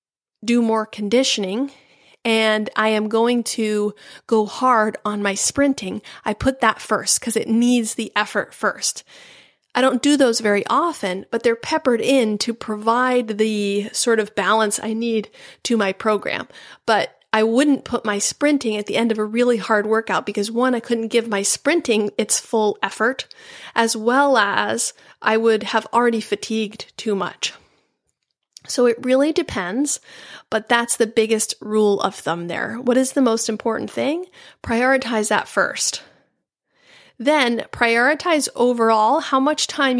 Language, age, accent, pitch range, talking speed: English, 30-49, American, 215-260 Hz, 160 wpm